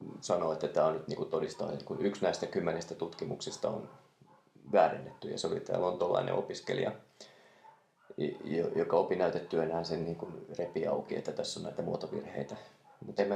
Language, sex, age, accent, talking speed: Finnish, male, 30-49, native, 140 wpm